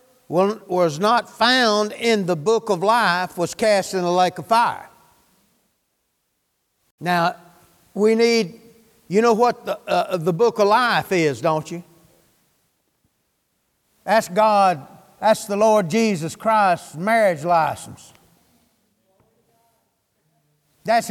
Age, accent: 60-79, American